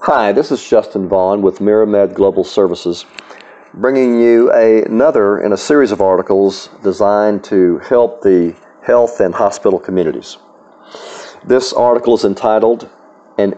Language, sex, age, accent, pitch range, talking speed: English, male, 40-59, American, 100-130 Hz, 135 wpm